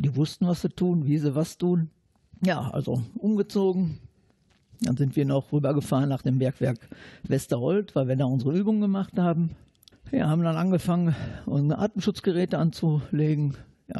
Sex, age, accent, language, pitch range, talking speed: male, 50-69, German, German, 135-170 Hz, 165 wpm